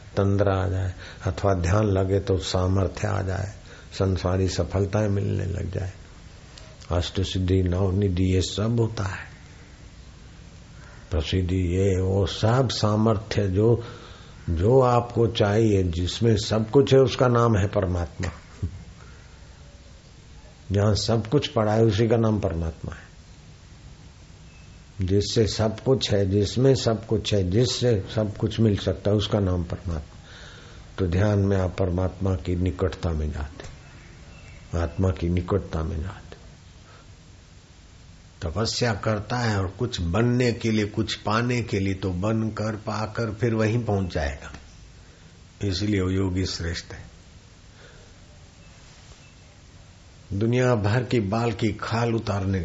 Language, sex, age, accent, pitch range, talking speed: Hindi, male, 60-79, native, 90-110 Hz, 125 wpm